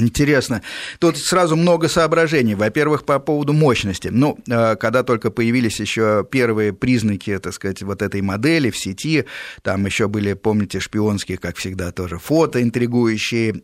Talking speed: 145 wpm